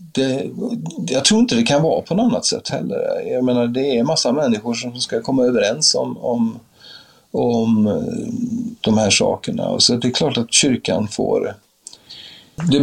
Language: English